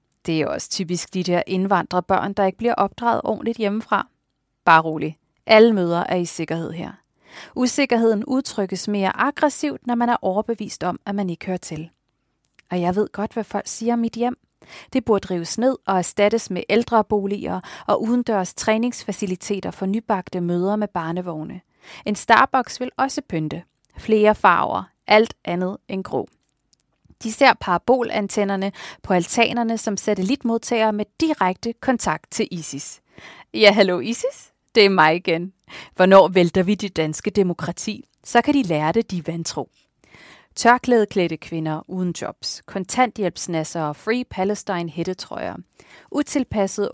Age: 30-49